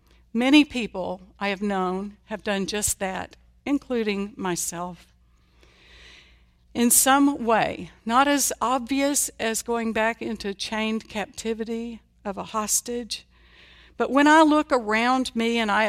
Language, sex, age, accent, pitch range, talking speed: English, female, 60-79, American, 170-235 Hz, 130 wpm